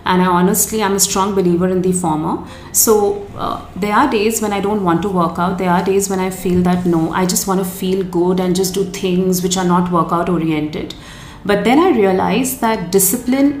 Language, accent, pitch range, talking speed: English, Indian, 180-210 Hz, 225 wpm